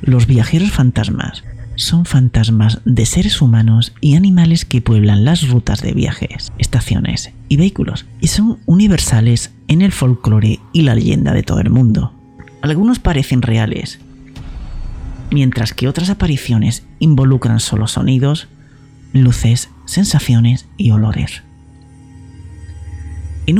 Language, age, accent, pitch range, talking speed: Spanish, 40-59, Spanish, 110-155 Hz, 120 wpm